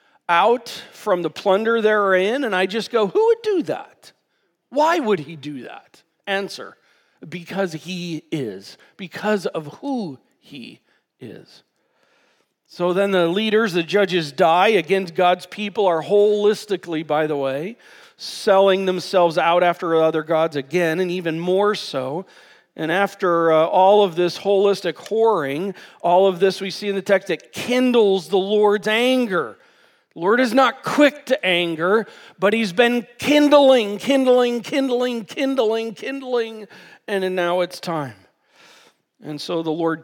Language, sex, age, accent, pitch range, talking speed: English, male, 40-59, American, 170-230 Hz, 145 wpm